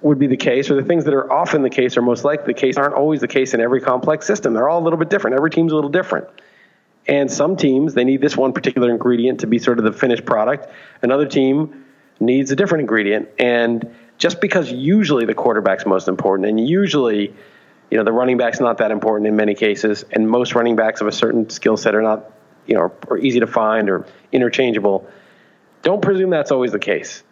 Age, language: 40-59, English